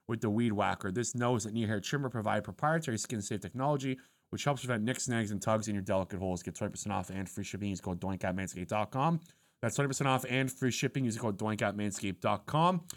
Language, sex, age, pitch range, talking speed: English, male, 30-49, 100-130 Hz, 205 wpm